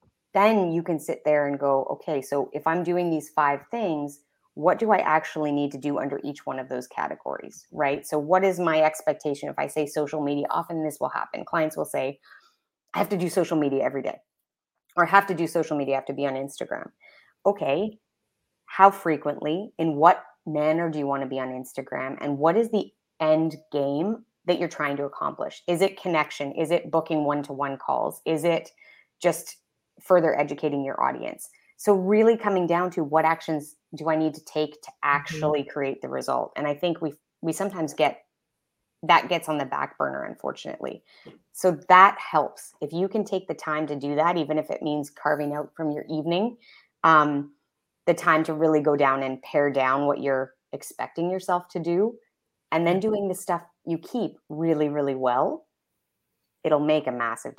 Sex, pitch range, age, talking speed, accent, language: female, 145-175 Hz, 30-49, 200 wpm, American, English